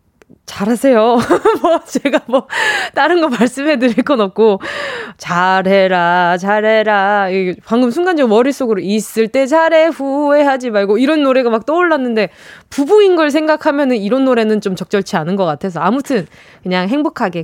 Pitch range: 205-295 Hz